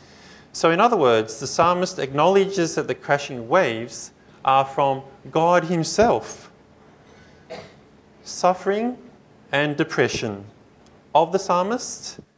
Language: English